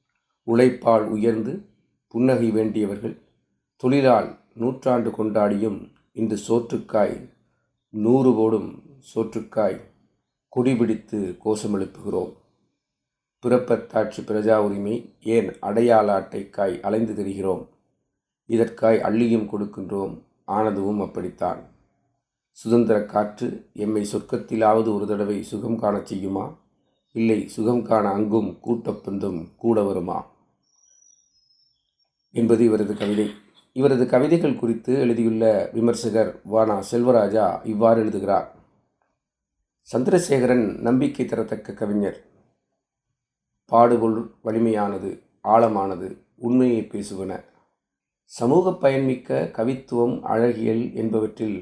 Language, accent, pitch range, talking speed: Tamil, native, 105-120 Hz, 80 wpm